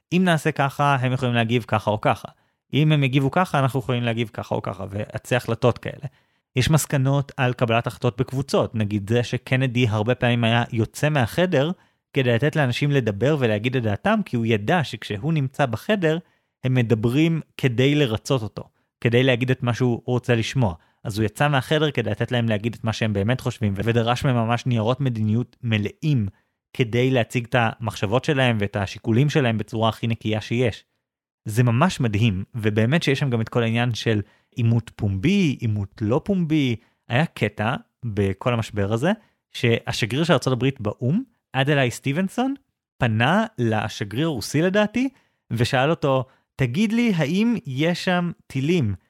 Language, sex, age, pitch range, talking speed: Hebrew, male, 30-49, 115-150 Hz, 160 wpm